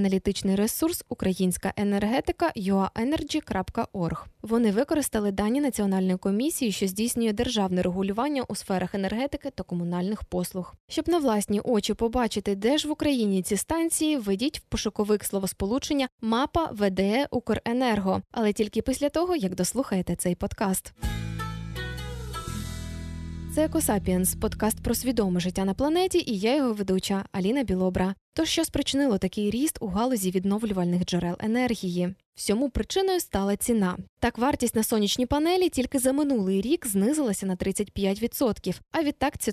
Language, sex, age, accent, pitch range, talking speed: Ukrainian, female, 10-29, native, 190-265 Hz, 135 wpm